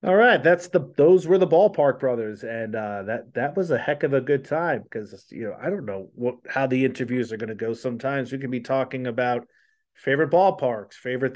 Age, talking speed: 30-49, 220 wpm